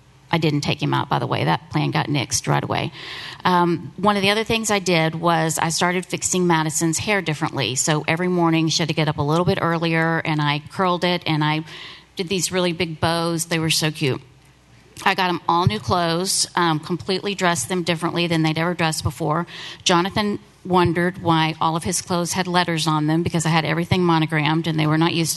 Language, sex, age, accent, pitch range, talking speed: English, female, 40-59, American, 160-195 Hz, 220 wpm